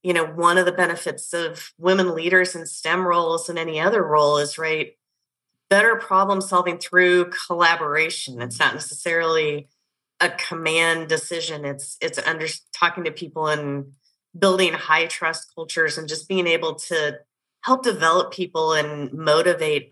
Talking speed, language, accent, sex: 150 wpm, English, American, female